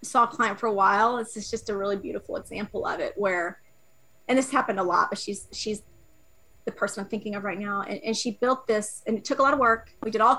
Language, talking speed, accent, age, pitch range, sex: English, 265 wpm, American, 30-49, 210-255 Hz, female